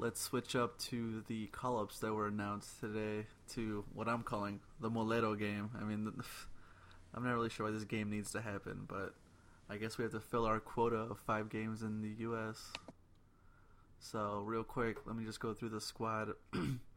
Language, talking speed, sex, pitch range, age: English, 190 wpm, male, 105-120 Hz, 20-39